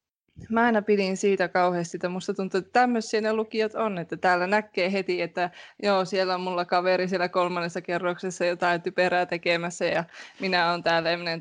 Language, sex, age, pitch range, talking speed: Finnish, female, 20-39, 165-195 Hz, 185 wpm